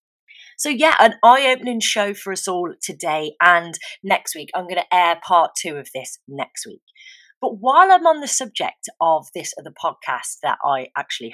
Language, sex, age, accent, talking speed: English, female, 30-49, British, 185 wpm